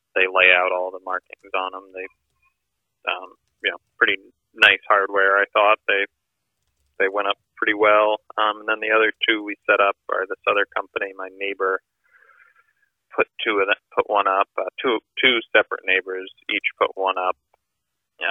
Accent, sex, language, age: American, male, English, 30-49